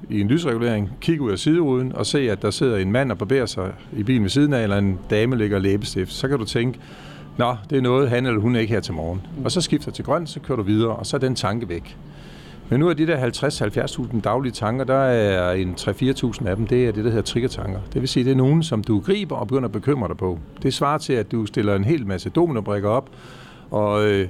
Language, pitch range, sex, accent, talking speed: Danish, 105-135 Hz, male, native, 260 wpm